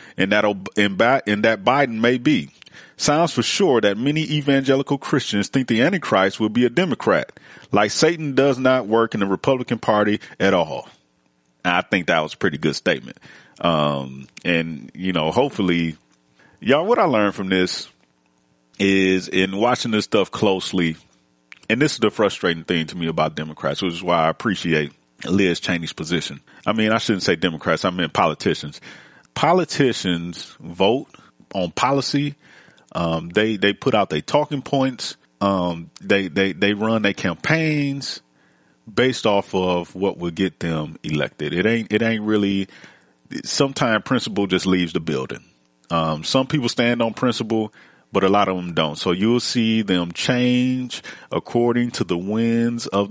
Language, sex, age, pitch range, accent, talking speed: English, male, 30-49, 80-120 Hz, American, 165 wpm